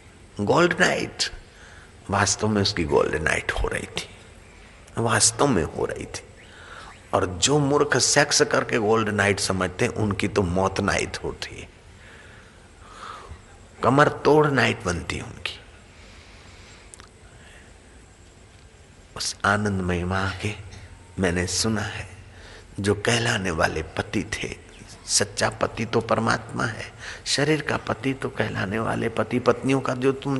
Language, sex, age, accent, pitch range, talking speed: Hindi, male, 50-69, native, 90-110 Hz, 125 wpm